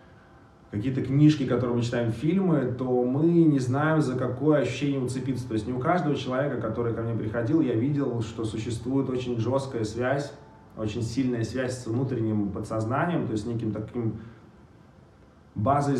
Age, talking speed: 20-39, 160 wpm